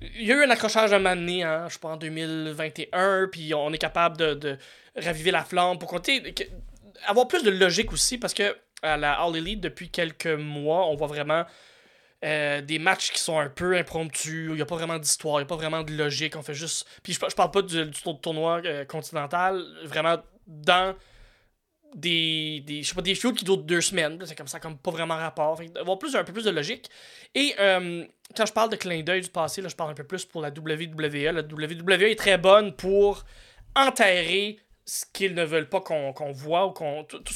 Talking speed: 220 wpm